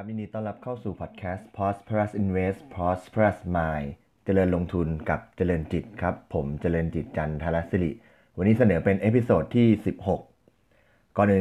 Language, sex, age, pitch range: Thai, male, 20-39, 85-105 Hz